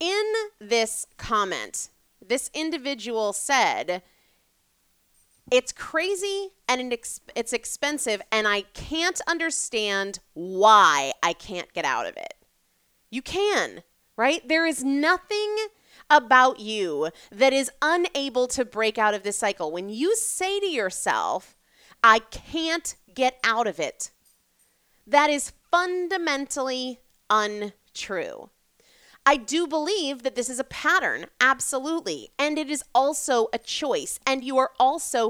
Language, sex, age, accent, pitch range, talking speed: English, female, 30-49, American, 220-320 Hz, 125 wpm